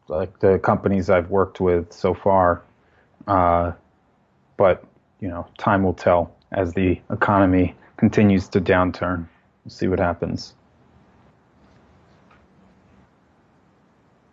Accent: American